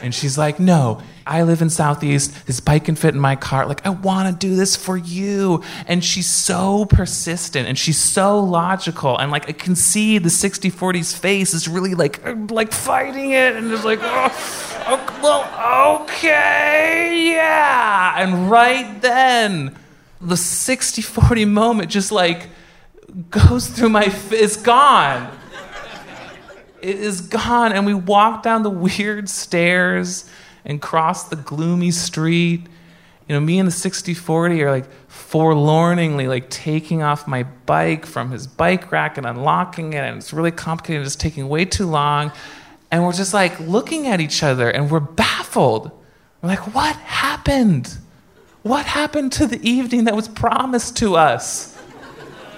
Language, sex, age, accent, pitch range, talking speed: English, male, 30-49, American, 155-215 Hz, 155 wpm